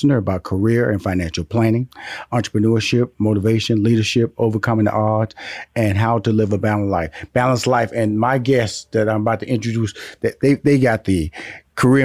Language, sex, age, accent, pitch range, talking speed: English, male, 40-59, American, 115-160 Hz, 170 wpm